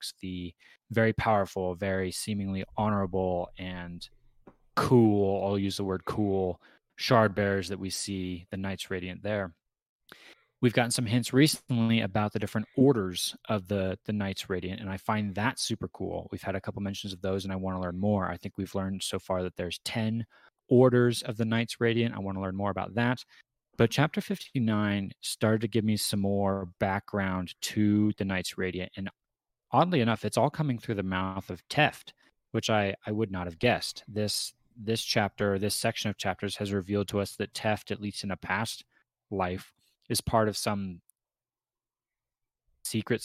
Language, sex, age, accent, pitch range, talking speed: English, male, 20-39, American, 95-115 Hz, 185 wpm